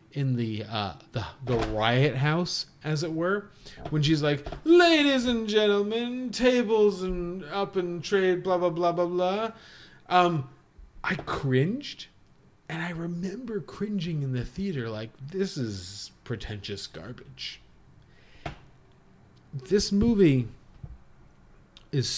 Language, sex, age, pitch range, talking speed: English, male, 30-49, 120-180 Hz, 120 wpm